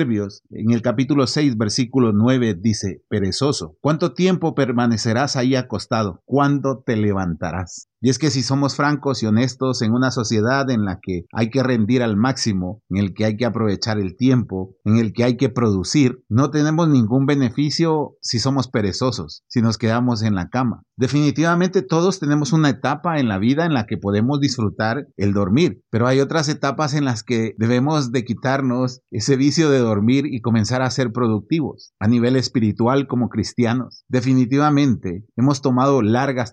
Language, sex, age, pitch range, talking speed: Spanish, male, 40-59, 110-140 Hz, 175 wpm